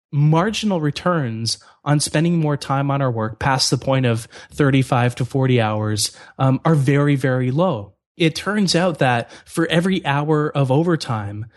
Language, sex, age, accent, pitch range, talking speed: English, male, 20-39, American, 120-155 Hz, 160 wpm